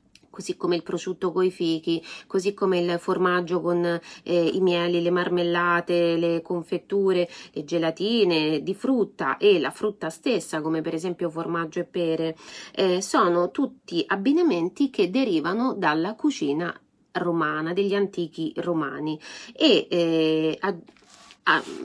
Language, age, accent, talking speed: Italian, 30-49, native, 130 wpm